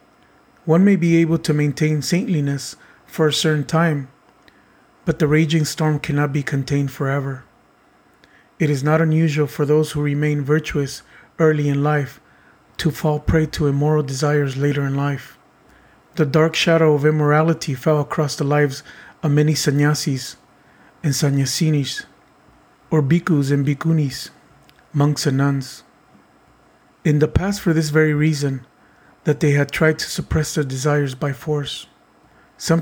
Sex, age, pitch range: male, 30-49, 145-160 Hz